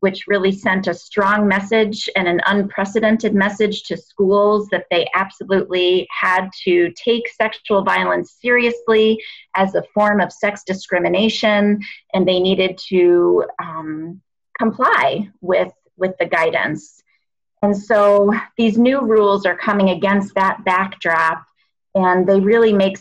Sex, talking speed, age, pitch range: female, 135 wpm, 30-49, 180-210 Hz